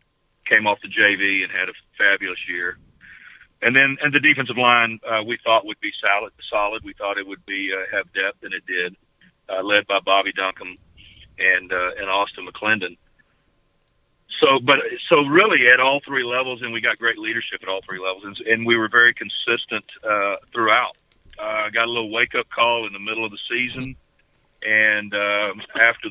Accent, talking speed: American, 195 wpm